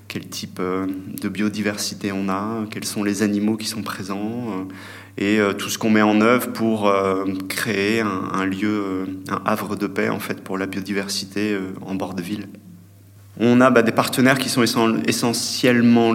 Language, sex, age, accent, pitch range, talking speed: French, male, 30-49, French, 100-115 Hz, 165 wpm